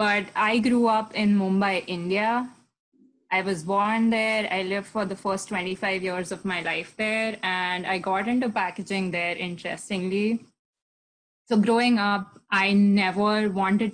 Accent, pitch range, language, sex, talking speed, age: Indian, 190-220 Hz, English, female, 150 wpm, 20-39